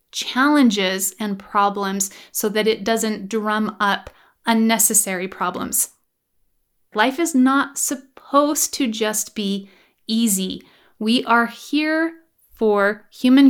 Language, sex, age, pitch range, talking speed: English, female, 30-49, 205-275 Hz, 105 wpm